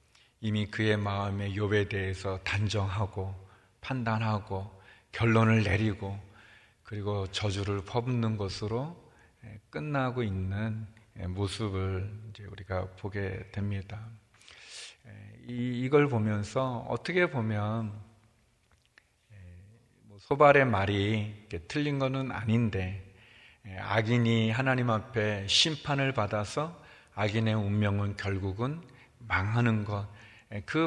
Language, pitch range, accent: Korean, 105-125 Hz, native